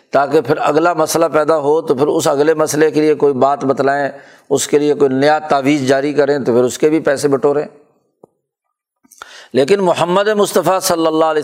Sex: male